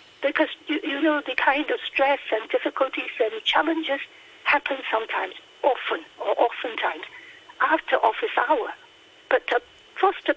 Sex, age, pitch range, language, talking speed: female, 60-79, 280-445 Hz, English, 120 wpm